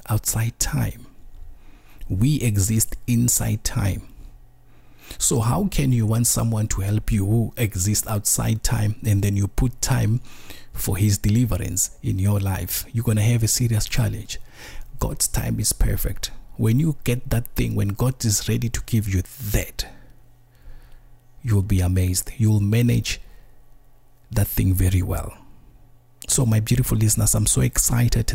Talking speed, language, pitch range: 150 wpm, English, 100-125 Hz